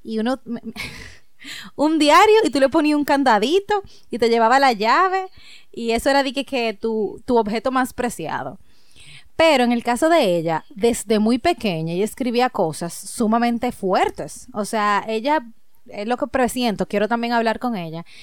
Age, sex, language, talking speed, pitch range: 20-39, female, Spanish, 175 wpm, 200-270 Hz